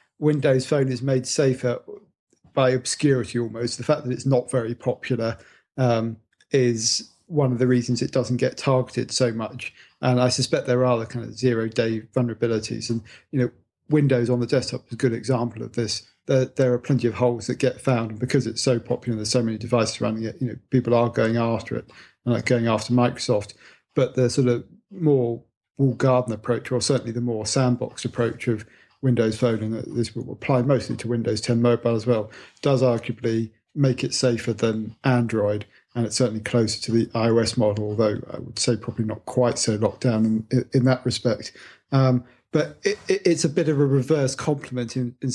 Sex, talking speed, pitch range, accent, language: male, 200 wpm, 115-130 Hz, British, English